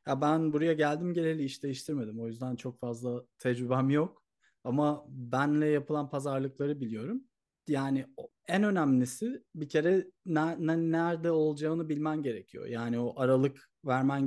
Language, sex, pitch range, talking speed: Turkish, male, 125-165 Hz, 130 wpm